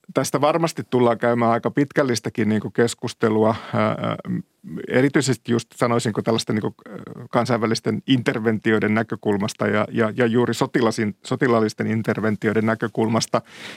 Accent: native